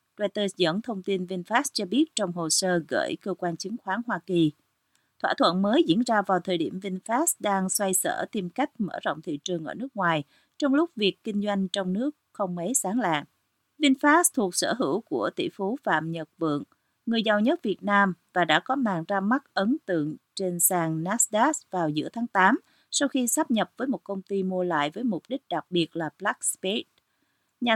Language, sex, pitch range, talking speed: Vietnamese, female, 180-245 Hz, 210 wpm